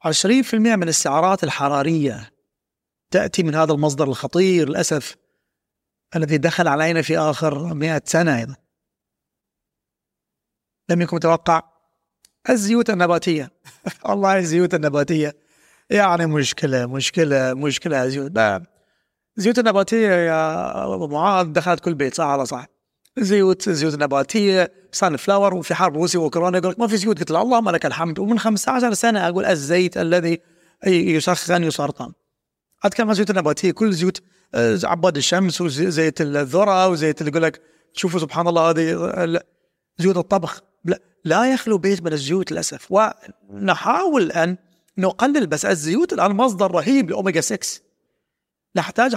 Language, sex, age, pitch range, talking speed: Arabic, male, 30-49, 160-195 Hz, 130 wpm